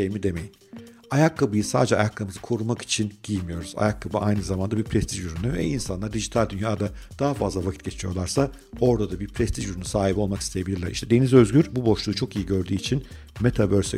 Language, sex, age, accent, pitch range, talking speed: Turkish, male, 50-69, native, 95-120 Hz, 175 wpm